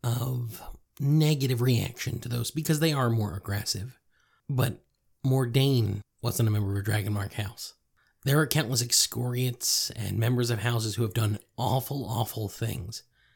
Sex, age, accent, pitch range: male, 30-49, American, 115-140 Hz